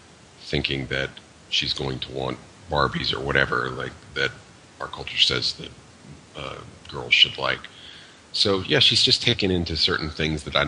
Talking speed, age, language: 165 wpm, 40-59, English